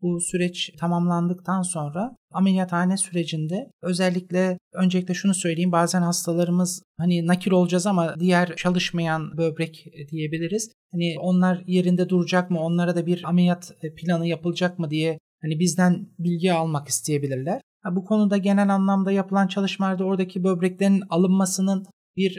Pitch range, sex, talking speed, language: 175-190 Hz, male, 130 wpm, Turkish